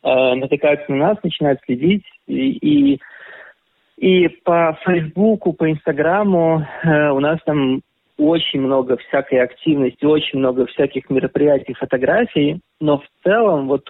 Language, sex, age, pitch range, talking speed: Russian, male, 20-39, 135-155 Hz, 125 wpm